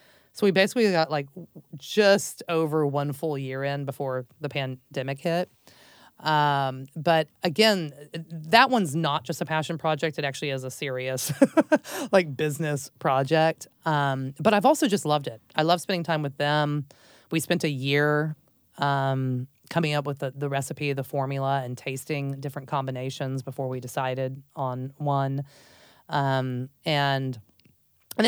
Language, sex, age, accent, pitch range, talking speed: English, female, 30-49, American, 135-160 Hz, 150 wpm